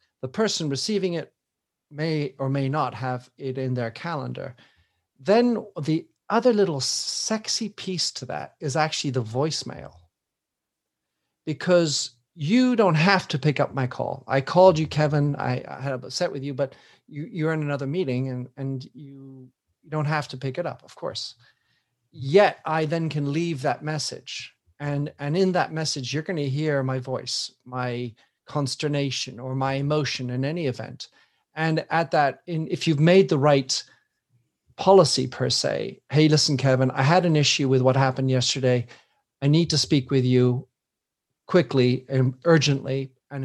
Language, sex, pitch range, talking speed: English, male, 130-160 Hz, 165 wpm